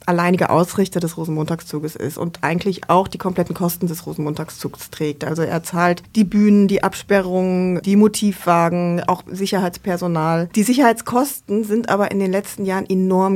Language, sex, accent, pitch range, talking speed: German, female, German, 180-210 Hz, 155 wpm